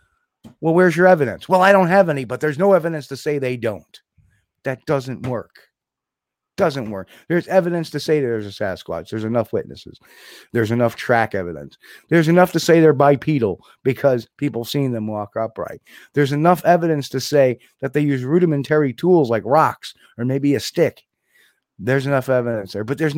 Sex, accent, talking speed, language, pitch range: male, American, 185 wpm, English, 115-150 Hz